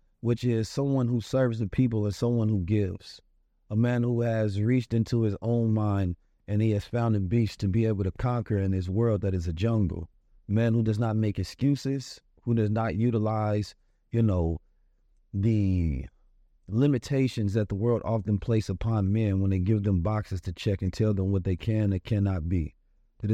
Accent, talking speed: American, 200 wpm